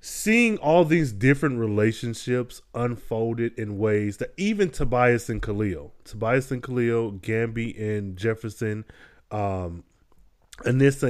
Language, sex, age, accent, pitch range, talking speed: English, male, 20-39, American, 110-135 Hz, 115 wpm